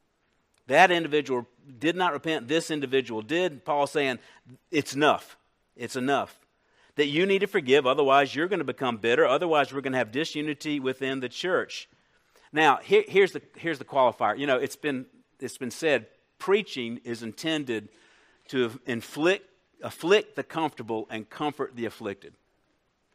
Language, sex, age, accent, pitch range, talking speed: English, male, 50-69, American, 125-155 Hz, 155 wpm